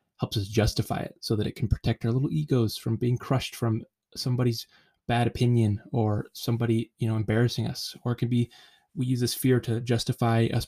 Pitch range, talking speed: 115-125 Hz, 200 wpm